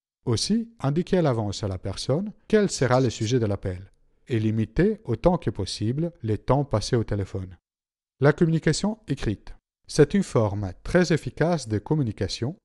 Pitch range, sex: 105-150 Hz, male